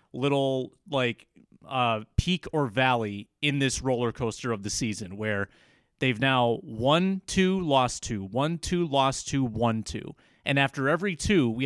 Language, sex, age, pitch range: English, male, 30-49, 120-150 Hz